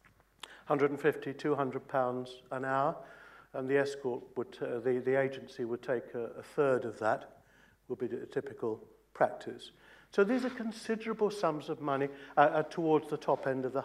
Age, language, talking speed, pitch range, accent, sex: 60-79, English, 175 wpm, 130-170 Hz, British, male